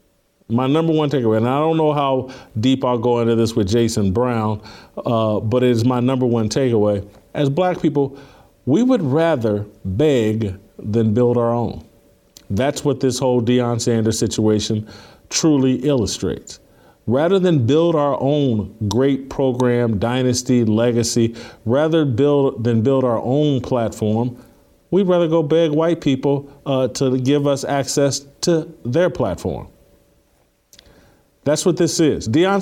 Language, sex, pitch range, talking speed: English, male, 115-155 Hz, 145 wpm